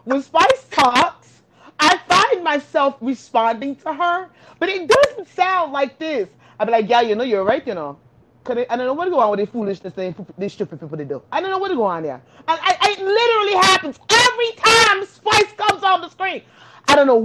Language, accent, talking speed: English, American, 225 wpm